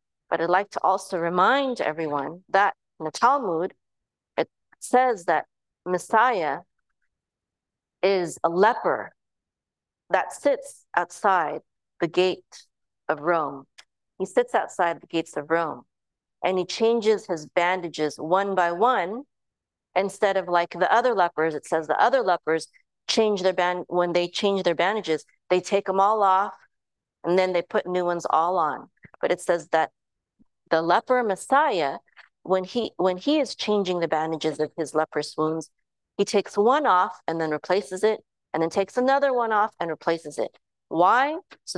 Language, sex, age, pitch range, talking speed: English, female, 40-59, 165-210 Hz, 160 wpm